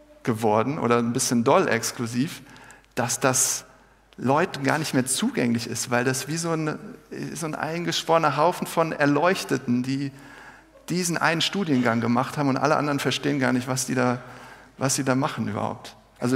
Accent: German